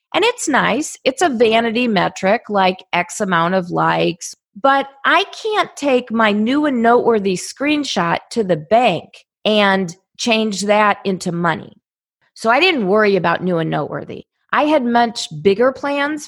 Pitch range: 175-240 Hz